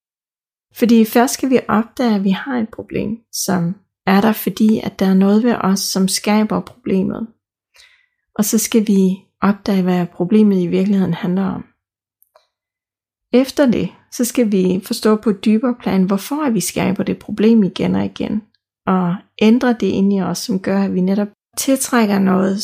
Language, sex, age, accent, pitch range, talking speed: Danish, female, 30-49, native, 195-230 Hz, 170 wpm